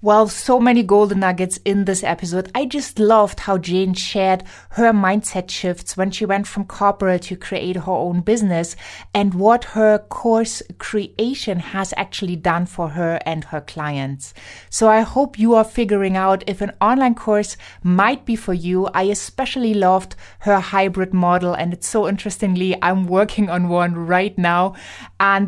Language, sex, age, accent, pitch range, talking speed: English, female, 20-39, German, 180-215 Hz, 170 wpm